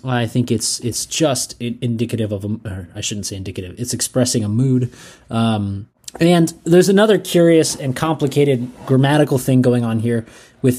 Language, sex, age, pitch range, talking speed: English, male, 20-39, 115-150 Hz, 160 wpm